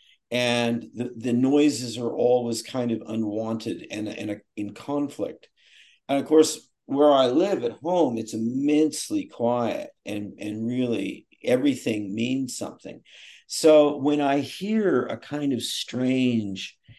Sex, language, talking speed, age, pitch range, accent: male, English, 140 wpm, 50-69, 110-140 Hz, American